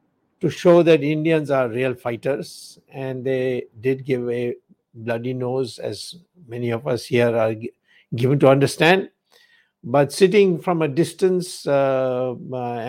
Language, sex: English, male